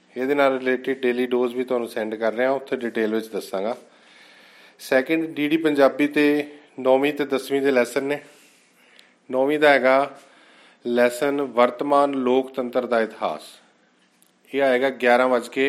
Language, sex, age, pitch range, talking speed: Punjabi, male, 40-59, 120-140 Hz, 135 wpm